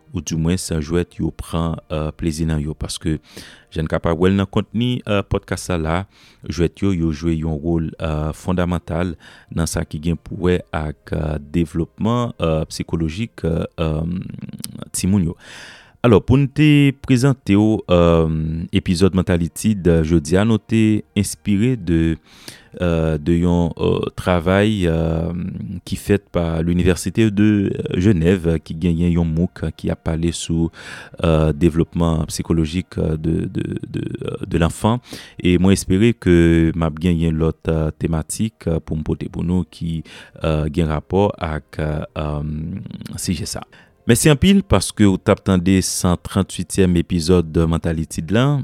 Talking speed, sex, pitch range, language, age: 150 wpm, male, 80-95 Hz, French, 30-49